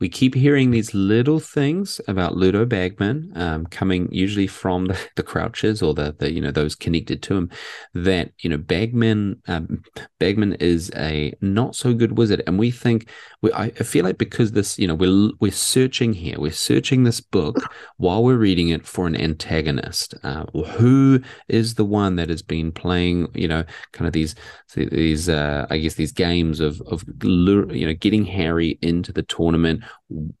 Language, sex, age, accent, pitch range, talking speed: English, male, 30-49, Australian, 80-105 Hz, 180 wpm